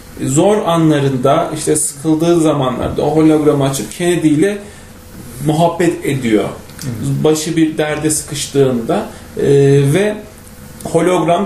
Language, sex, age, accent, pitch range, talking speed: Turkish, male, 40-59, native, 145-175 Hz, 95 wpm